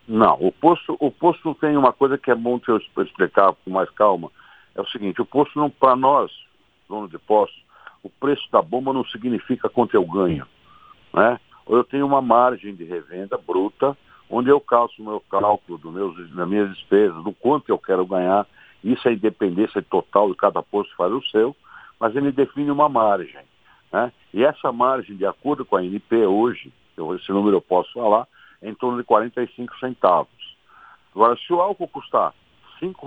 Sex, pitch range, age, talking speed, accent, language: male, 100-130 Hz, 60-79, 185 wpm, Brazilian, Portuguese